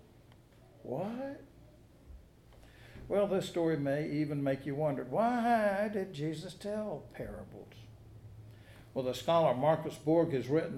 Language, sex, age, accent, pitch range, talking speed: English, male, 60-79, American, 115-160 Hz, 115 wpm